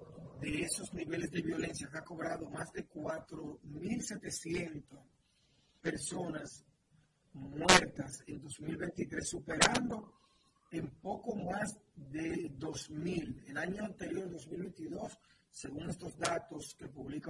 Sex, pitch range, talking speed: male, 150-185 Hz, 100 wpm